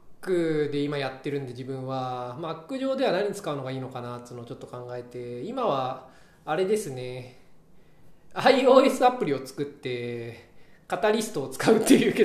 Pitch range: 125-165 Hz